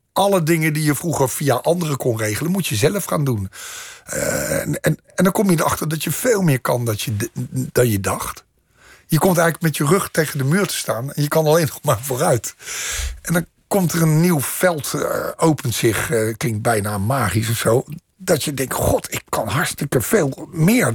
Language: Dutch